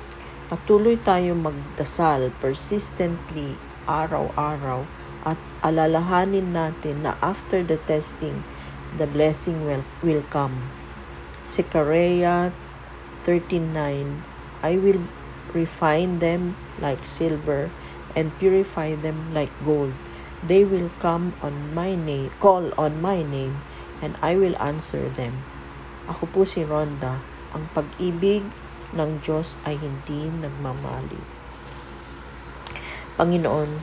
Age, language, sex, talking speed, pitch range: 40-59, English, female, 105 wpm, 130-175 Hz